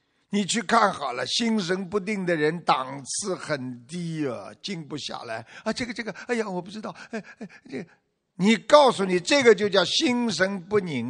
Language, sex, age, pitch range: Chinese, male, 50-69, 150-215 Hz